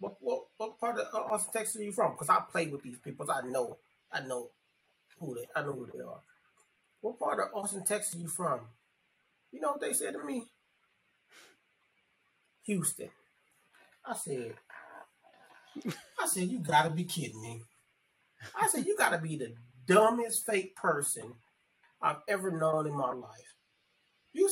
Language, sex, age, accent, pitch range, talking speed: English, male, 30-49, American, 150-200 Hz, 170 wpm